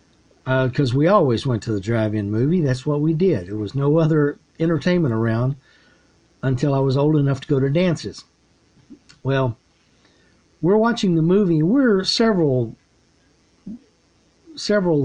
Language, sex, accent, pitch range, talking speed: English, male, American, 130-175 Hz, 145 wpm